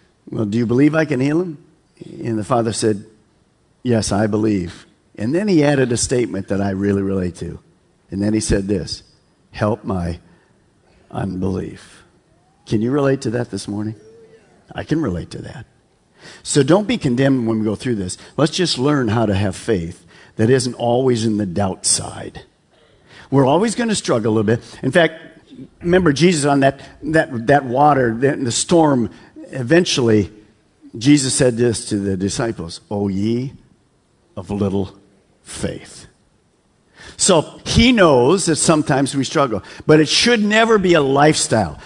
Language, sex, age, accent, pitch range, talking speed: English, male, 50-69, American, 110-170 Hz, 165 wpm